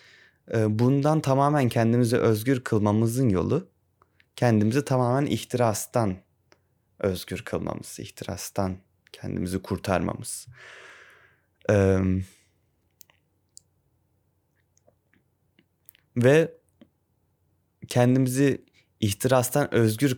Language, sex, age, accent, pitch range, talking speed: Turkish, male, 30-49, native, 95-120 Hz, 55 wpm